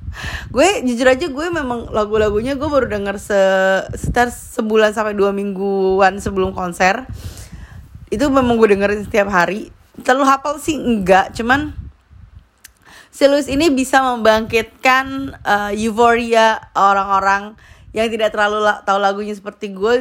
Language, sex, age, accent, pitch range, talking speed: Indonesian, female, 20-39, native, 195-240 Hz, 130 wpm